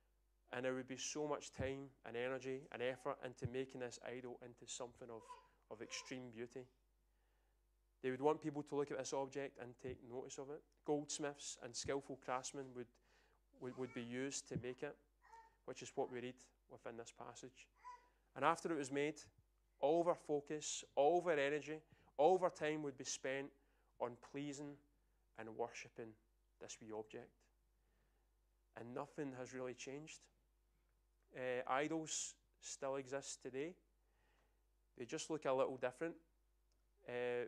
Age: 30-49